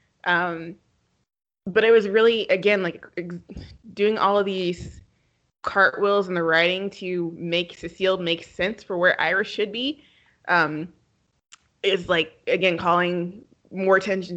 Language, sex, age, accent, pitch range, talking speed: English, female, 20-39, American, 170-215 Hz, 140 wpm